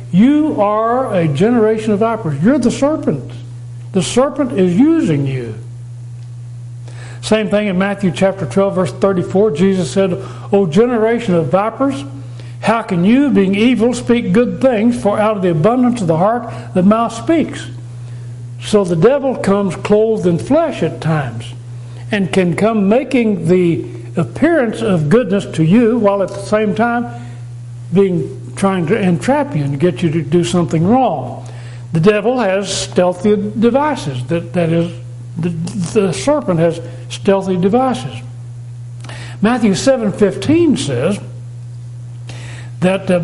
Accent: American